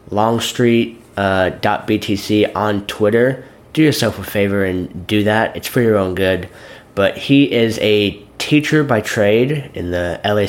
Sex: male